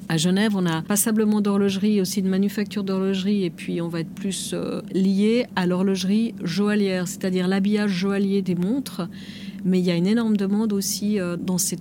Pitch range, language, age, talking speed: 190-215 Hz, French, 40-59, 180 wpm